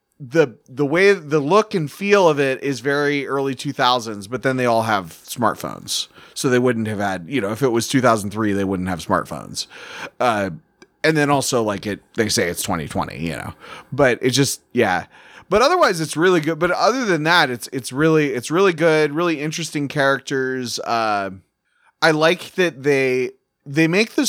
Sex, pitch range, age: male, 120-160 Hz, 30-49